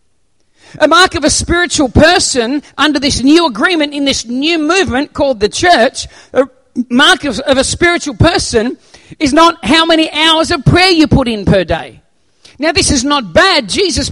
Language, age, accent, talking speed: English, 40-59, Australian, 180 wpm